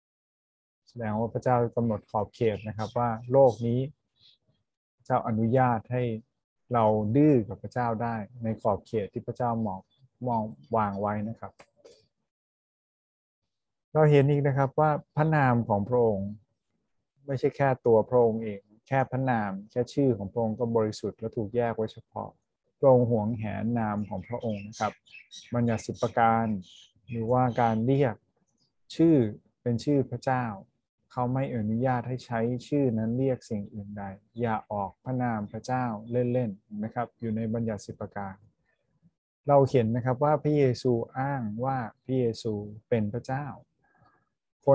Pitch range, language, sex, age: 110-130 Hz, Thai, male, 20-39